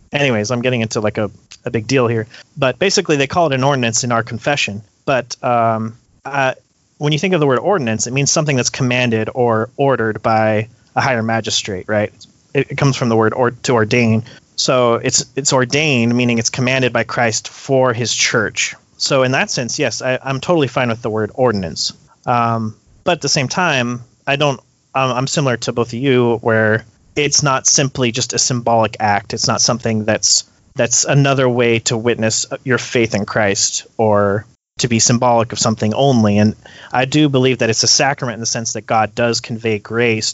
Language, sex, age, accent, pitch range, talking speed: English, male, 30-49, American, 110-135 Hz, 200 wpm